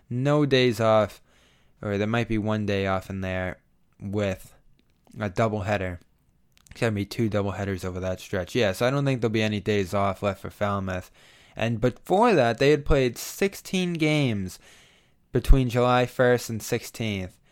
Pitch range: 100-125 Hz